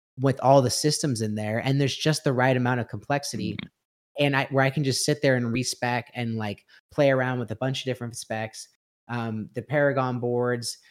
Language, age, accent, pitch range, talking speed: English, 30-49, American, 110-130 Hz, 210 wpm